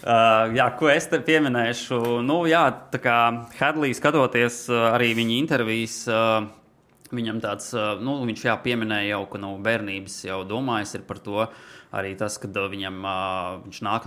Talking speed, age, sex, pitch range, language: 175 wpm, 20-39, male, 100-120 Hz, English